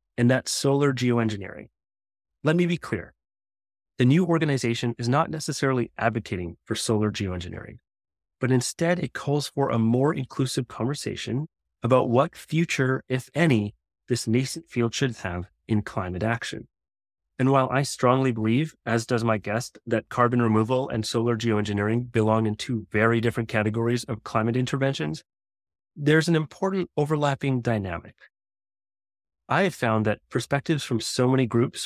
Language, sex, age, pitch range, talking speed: English, male, 30-49, 105-135 Hz, 145 wpm